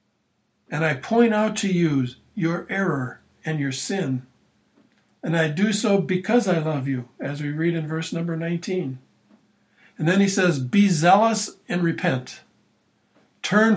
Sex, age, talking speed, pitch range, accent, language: male, 60-79, 155 wpm, 140-180 Hz, American, English